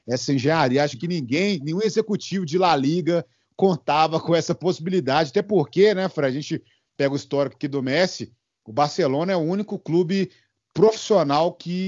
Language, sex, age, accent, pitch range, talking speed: Portuguese, male, 40-59, Brazilian, 145-180 Hz, 170 wpm